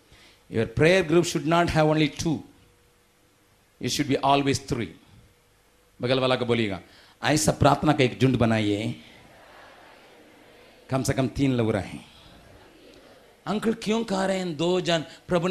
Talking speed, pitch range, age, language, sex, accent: 110 wpm, 130-210 Hz, 50-69, Hindi, male, native